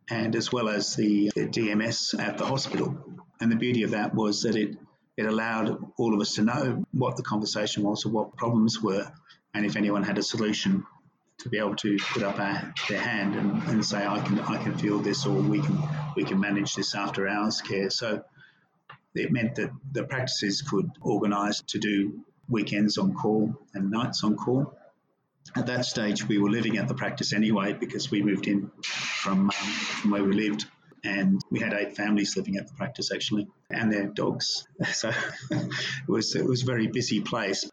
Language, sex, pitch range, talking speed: English, male, 100-115 Hz, 200 wpm